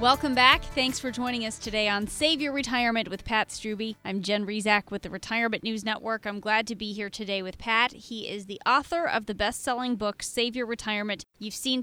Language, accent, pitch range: English, American, 205-250 Hz